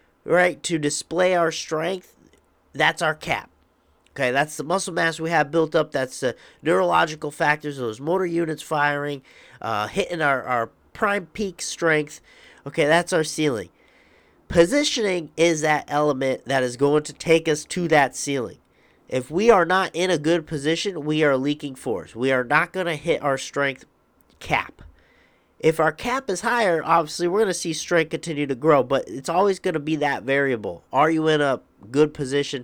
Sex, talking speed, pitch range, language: male, 180 wpm, 135-165 Hz, English